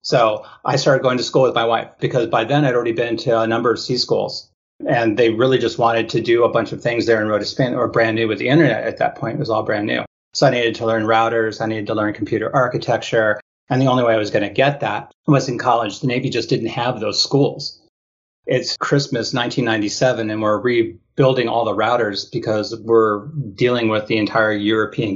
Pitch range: 110-130 Hz